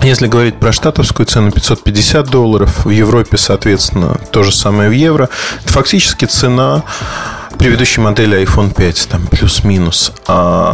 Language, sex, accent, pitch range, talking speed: Russian, male, native, 105-130 Hz, 140 wpm